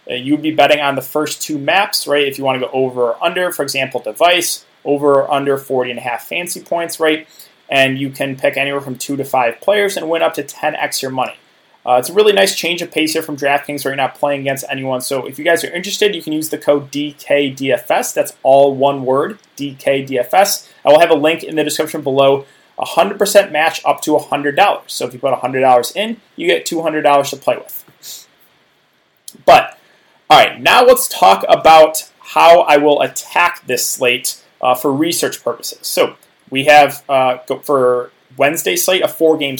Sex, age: male, 20-39